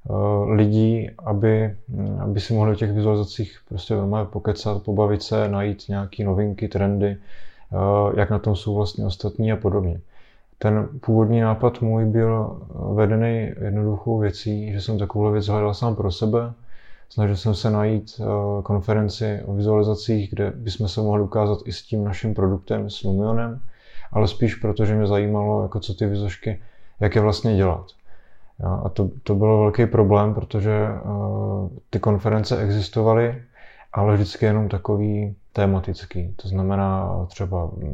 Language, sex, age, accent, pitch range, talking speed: Czech, male, 20-39, native, 100-110 Hz, 145 wpm